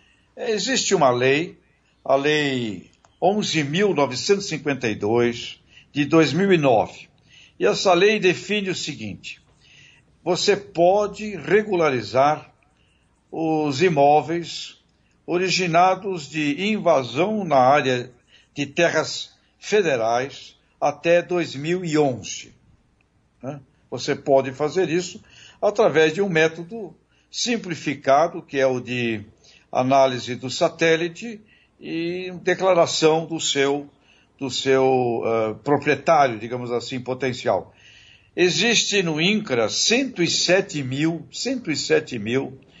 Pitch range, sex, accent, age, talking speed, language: 130-175 Hz, male, Brazilian, 60-79, 85 wpm, Portuguese